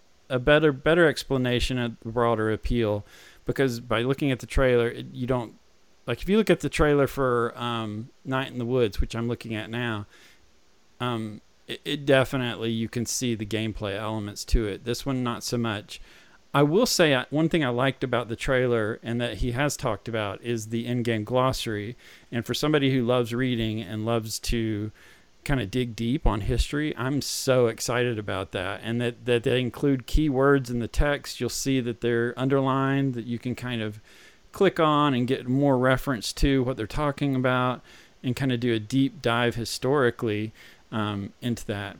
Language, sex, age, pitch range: English, male, 40-59, 110-135 Hz